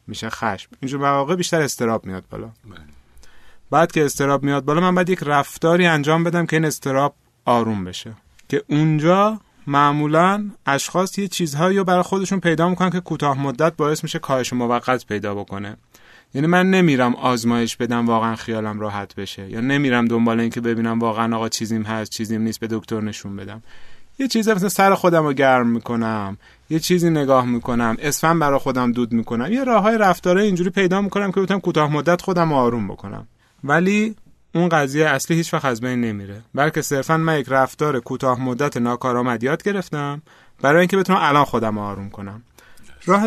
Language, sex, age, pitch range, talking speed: Persian, male, 30-49, 120-175 Hz, 170 wpm